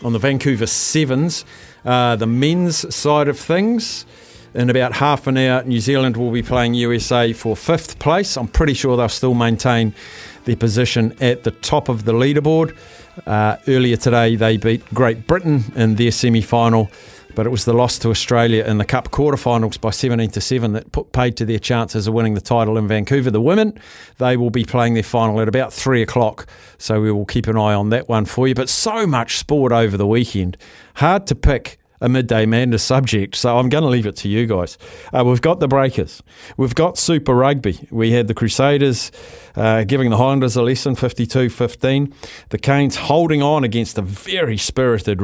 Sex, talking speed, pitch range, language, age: male, 195 wpm, 110-130 Hz, English, 50-69